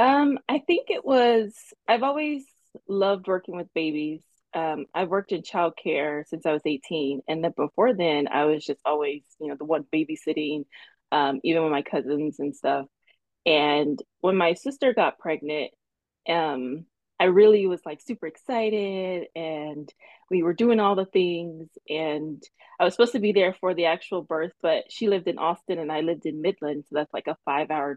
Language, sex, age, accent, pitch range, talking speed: English, female, 20-39, American, 155-205 Hz, 185 wpm